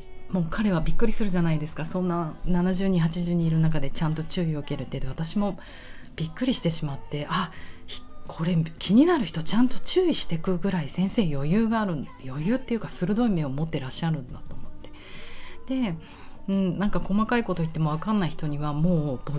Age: 40-59